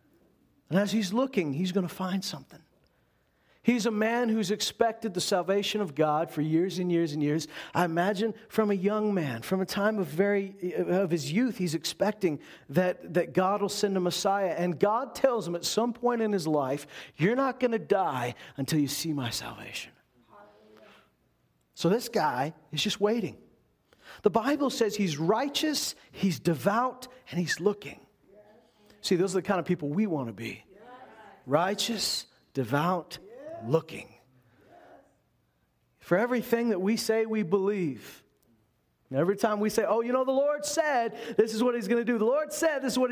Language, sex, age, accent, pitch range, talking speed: English, male, 50-69, American, 170-230 Hz, 175 wpm